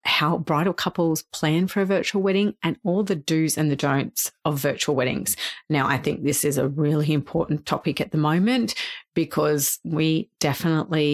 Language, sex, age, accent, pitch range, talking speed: English, female, 40-59, Australian, 150-175 Hz, 180 wpm